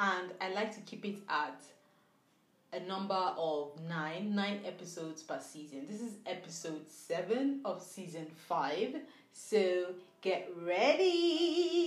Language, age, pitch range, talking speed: English, 30-49, 180-295 Hz, 125 wpm